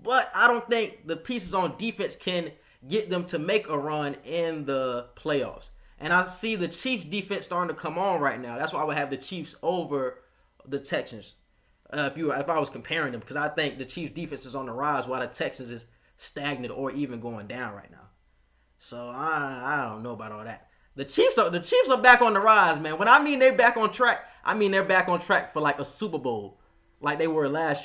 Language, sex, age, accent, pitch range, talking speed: English, male, 20-39, American, 135-200 Hz, 235 wpm